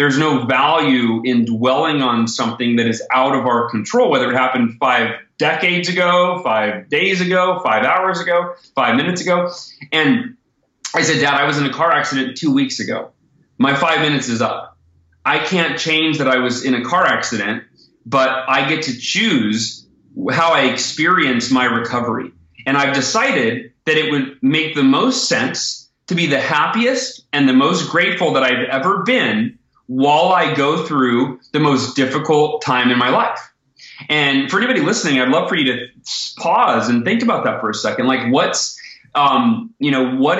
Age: 30-49